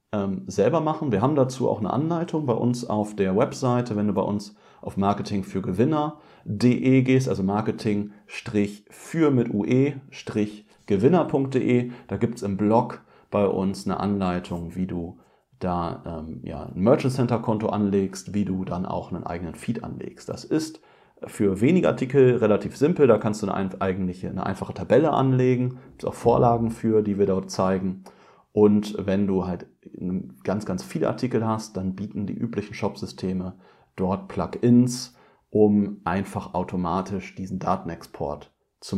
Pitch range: 95-125 Hz